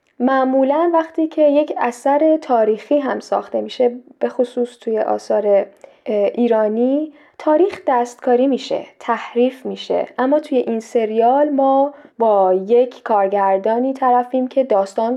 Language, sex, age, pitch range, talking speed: Persian, female, 10-29, 210-265 Hz, 120 wpm